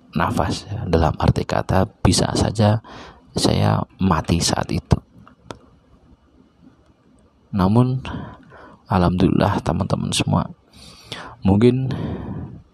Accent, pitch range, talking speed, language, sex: native, 85-105 Hz, 70 wpm, Indonesian, male